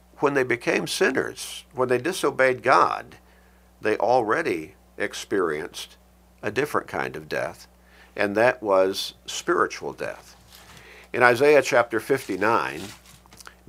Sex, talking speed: male, 110 wpm